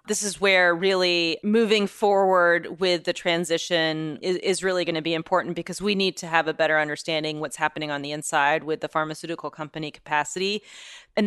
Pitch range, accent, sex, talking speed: 160-190 Hz, American, female, 185 wpm